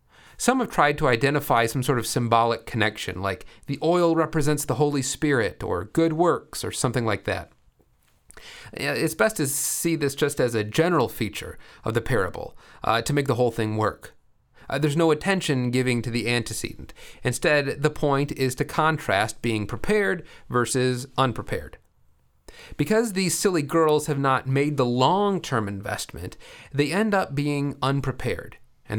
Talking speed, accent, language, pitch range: 160 wpm, American, English, 120-155 Hz